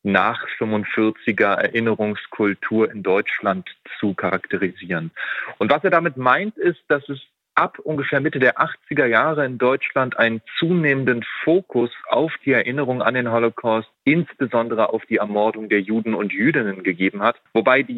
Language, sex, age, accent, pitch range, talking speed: German, male, 30-49, German, 110-140 Hz, 145 wpm